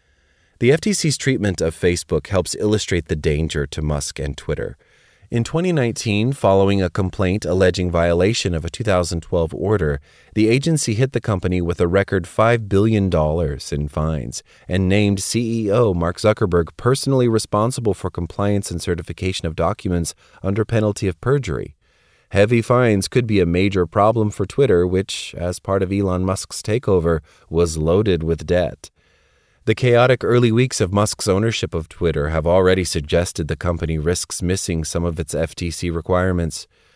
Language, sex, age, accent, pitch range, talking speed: English, male, 30-49, American, 85-105 Hz, 155 wpm